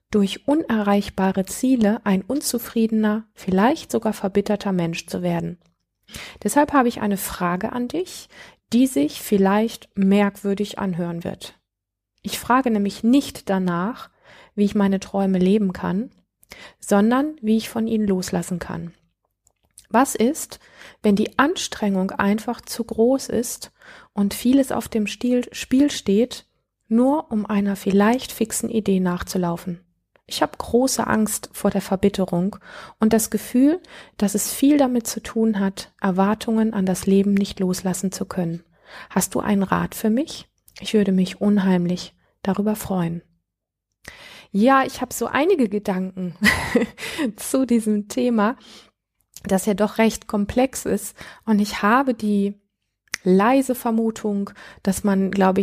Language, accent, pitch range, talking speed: German, German, 190-235 Hz, 135 wpm